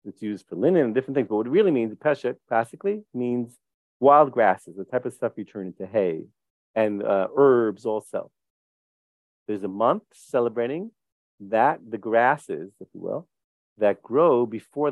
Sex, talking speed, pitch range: male, 165 wpm, 105-135 Hz